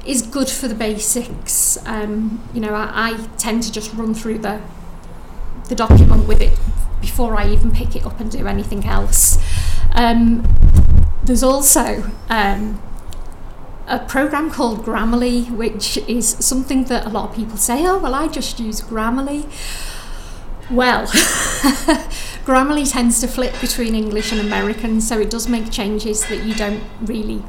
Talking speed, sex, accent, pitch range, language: 155 wpm, female, British, 205-245 Hz, English